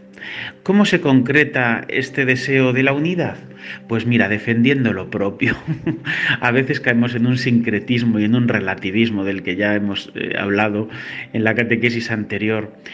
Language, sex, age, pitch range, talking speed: Spanish, male, 40-59, 100-125 Hz, 155 wpm